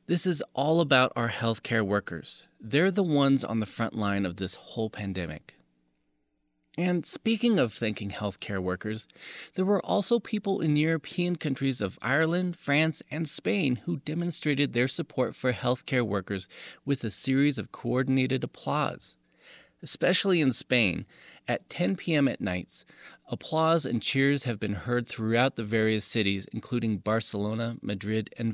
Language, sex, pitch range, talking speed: English, male, 100-145 Hz, 150 wpm